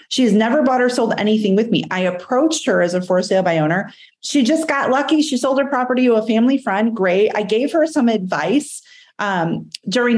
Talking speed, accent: 225 wpm, American